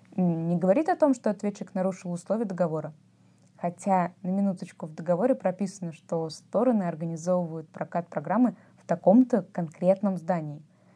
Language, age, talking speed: Russian, 20-39, 130 wpm